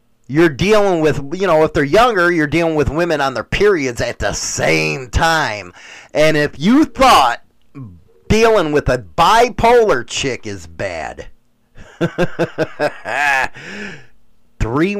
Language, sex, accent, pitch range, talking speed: English, male, American, 115-185 Hz, 125 wpm